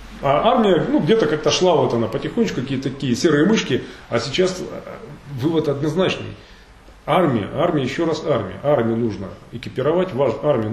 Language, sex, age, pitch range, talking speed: Russian, male, 30-49, 125-160 Hz, 145 wpm